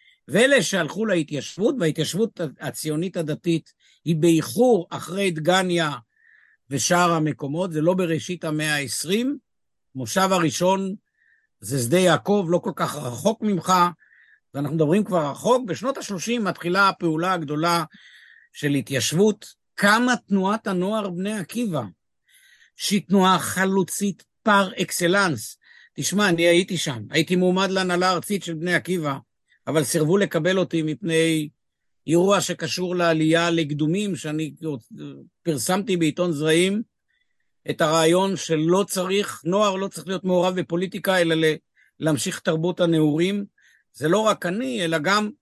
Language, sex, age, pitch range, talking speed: Hebrew, male, 60-79, 160-205 Hz, 120 wpm